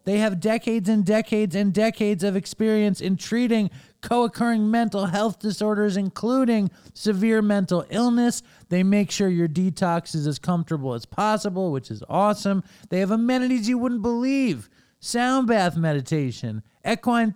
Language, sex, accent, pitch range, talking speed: English, male, American, 155-215 Hz, 145 wpm